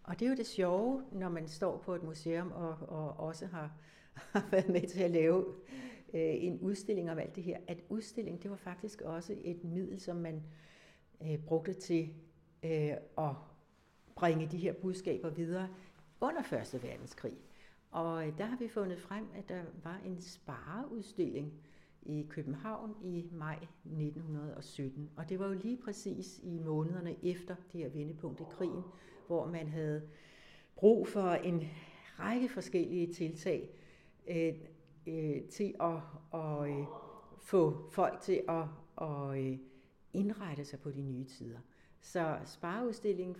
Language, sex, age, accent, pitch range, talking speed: Danish, female, 60-79, native, 155-190 Hz, 150 wpm